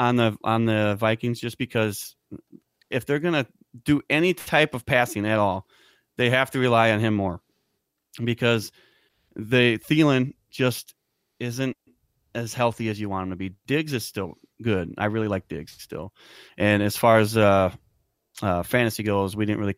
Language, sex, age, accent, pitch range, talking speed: English, male, 30-49, American, 105-125 Hz, 175 wpm